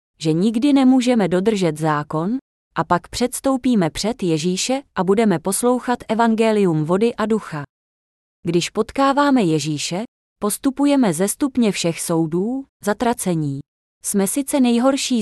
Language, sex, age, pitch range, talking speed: Czech, female, 20-39, 170-235 Hz, 115 wpm